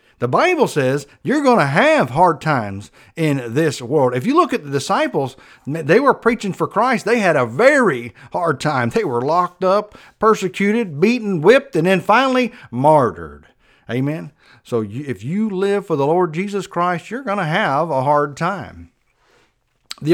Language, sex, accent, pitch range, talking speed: English, male, American, 135-220 Hz, 175 wpm